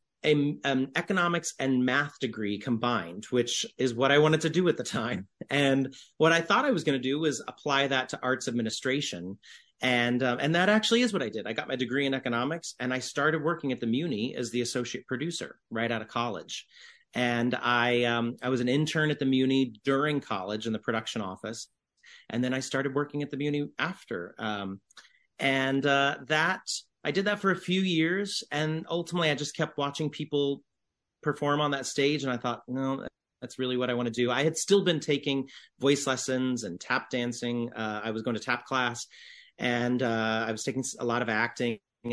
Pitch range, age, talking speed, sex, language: 120-150 Hz, 30-49, 210 wpm, male, English